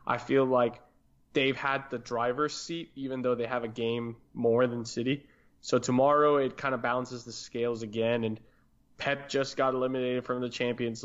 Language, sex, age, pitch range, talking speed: English, male, 20-39, 115-140 Hz, 185 wpm